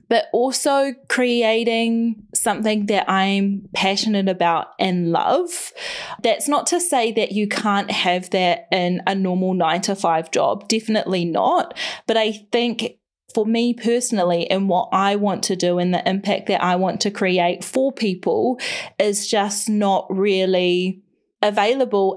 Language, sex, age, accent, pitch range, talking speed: English, female, 20-39, Australian, 185-230 Hz, 145 wpm